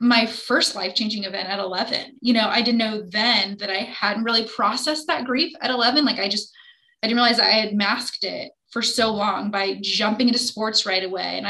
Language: English